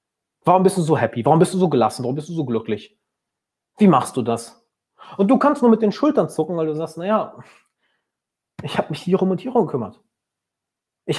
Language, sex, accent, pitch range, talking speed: German, male, German, 125-190 Hz, 220 wpm